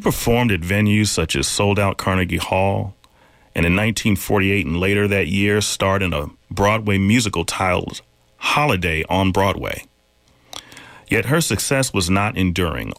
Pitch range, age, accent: 85-105 Hz, 40-59, American